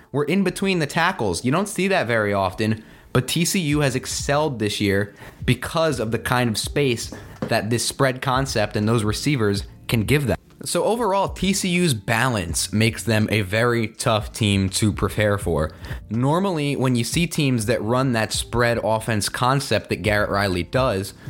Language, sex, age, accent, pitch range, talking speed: English, male, 20-39, American, 110-145 Hz, 170 wpm